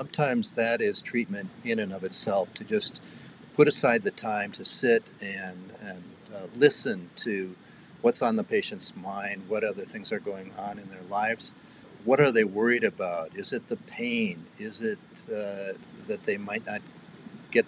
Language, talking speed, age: English, 175 wpm, 50-69